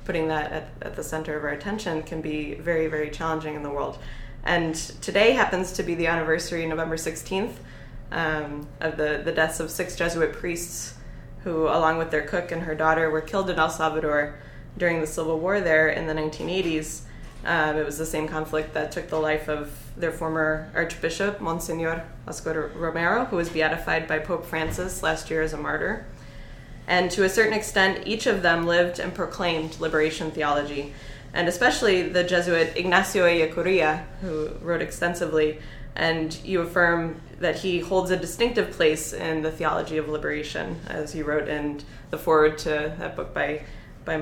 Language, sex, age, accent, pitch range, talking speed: English, female, 20-39, American, 155-170 Hz, 180 wpm